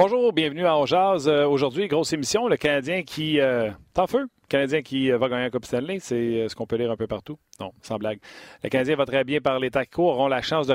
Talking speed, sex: 255 wpm, male